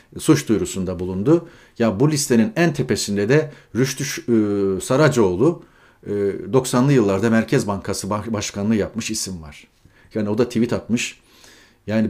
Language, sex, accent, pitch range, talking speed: Turkish, male, native, 110-155 Hz, 135 wpm